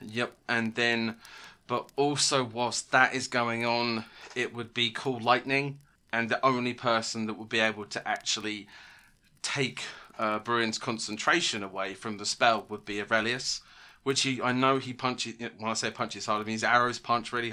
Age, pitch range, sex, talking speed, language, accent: 20-39, 110-120 Hz, male, 180 wpm, English, British